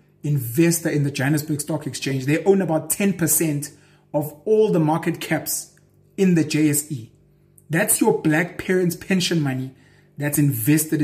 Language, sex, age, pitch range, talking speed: English, male, 30-49, 145-180 Hz, 140 wpm